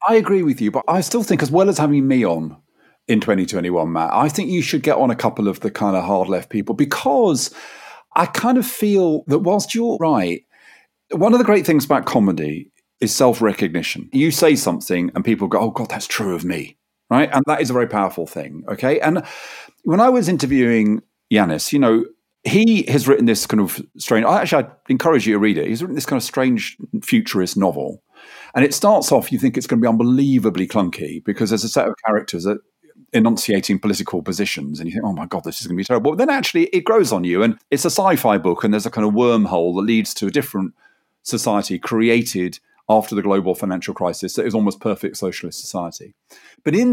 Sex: male